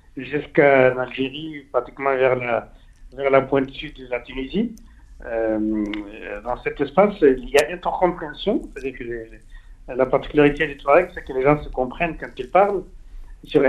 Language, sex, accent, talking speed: French, male, French, 155 wpm